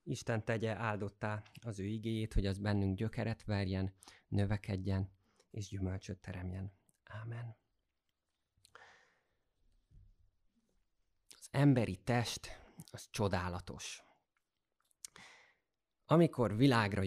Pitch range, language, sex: 95-120 Hz, Hungarian, male